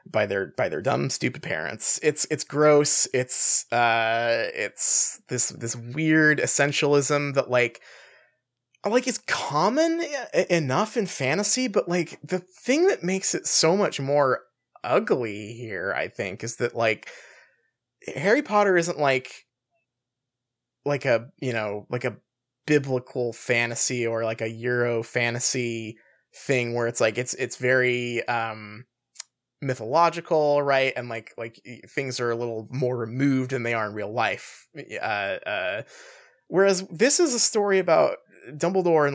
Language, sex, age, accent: English, male, 20-39, American